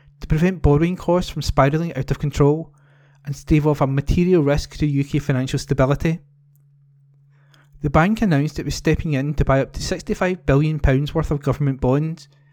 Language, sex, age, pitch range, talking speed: English, male, 20-39, 140-160 Hz, 170 wpm